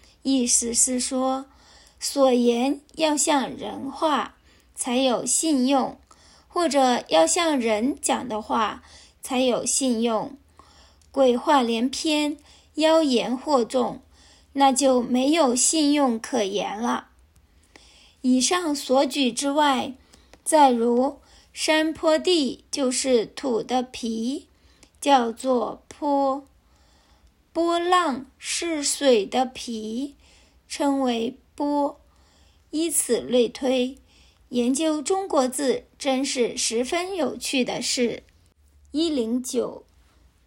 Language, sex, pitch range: Chinese, female, 235-285 Hz